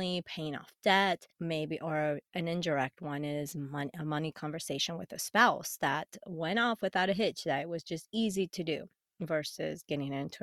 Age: 30-49